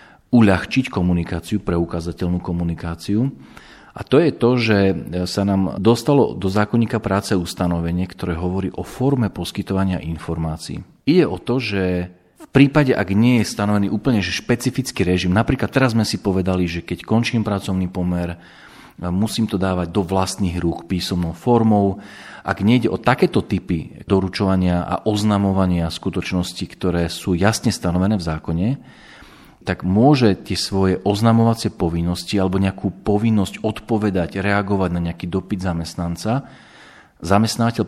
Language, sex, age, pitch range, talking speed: Slovak, male, 40-59, 90-110 Hz, 135 wpm